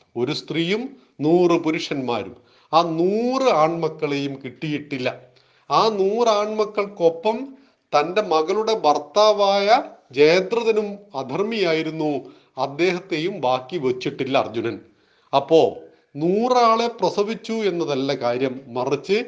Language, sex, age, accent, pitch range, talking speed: Malayalam, male, 40-59, native, 135-180 Hz, 80 wpm